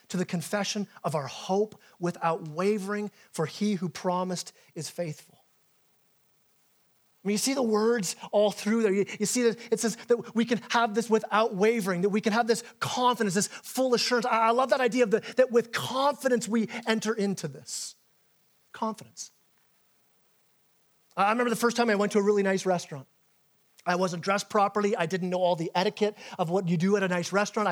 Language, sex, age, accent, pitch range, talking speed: English, male, 30-49, American, 190-240 Hz, 195 wpm